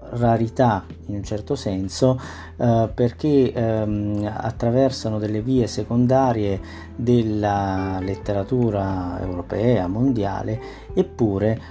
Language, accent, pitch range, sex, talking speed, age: Italian, native, 100-120 Hz, male, 80 wpm, 40-59